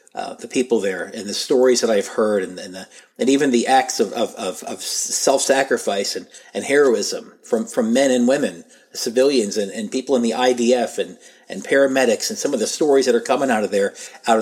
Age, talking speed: 40-59, 215 wpm